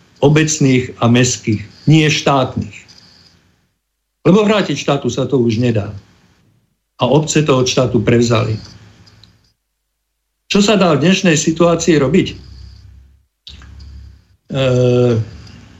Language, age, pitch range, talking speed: Slovak, 50-69, 100-145 Hz, 100 wpm